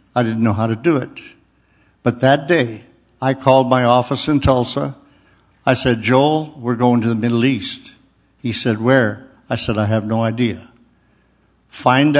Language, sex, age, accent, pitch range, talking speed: English, male, 60-79, American, 120-135 Hz, 170 wpm